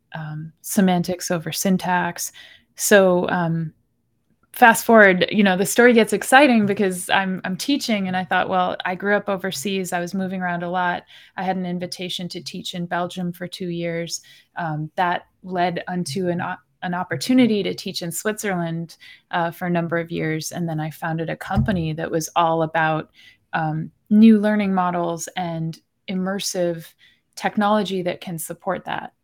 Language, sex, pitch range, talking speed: English, female, 175-205 Hz, 165 wpm